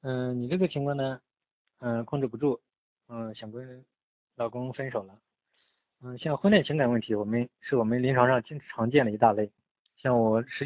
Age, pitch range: 20-39, 115-130 Hz